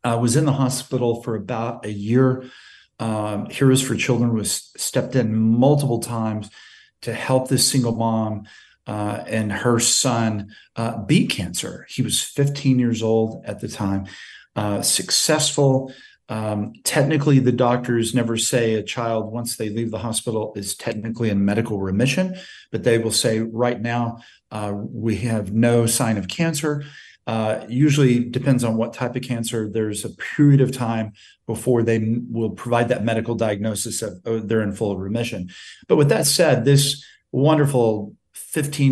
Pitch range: 110-130 Hz